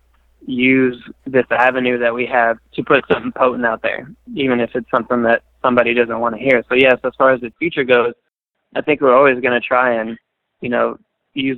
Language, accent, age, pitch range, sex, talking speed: English, American, 20-39, 115-130 Hz, male, 210 wpm